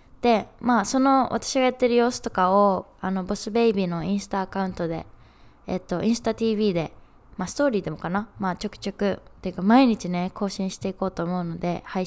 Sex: female